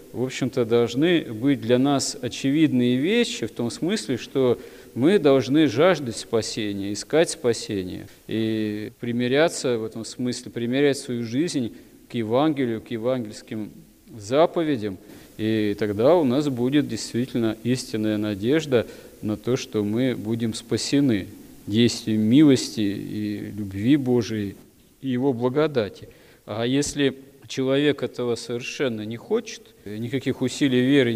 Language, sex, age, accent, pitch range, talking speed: Russian, male, 40-59, native, 110-130 Hz, 120 wpm